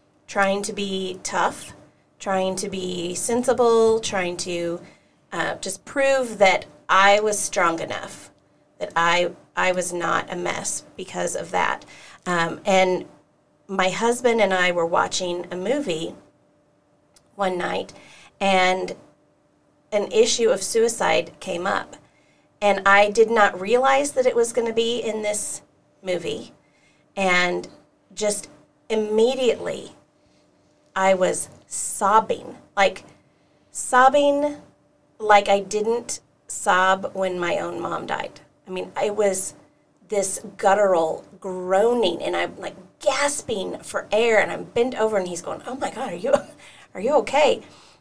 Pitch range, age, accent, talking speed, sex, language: 185-235 Hz, 30-49, American, 130 wpm, female, English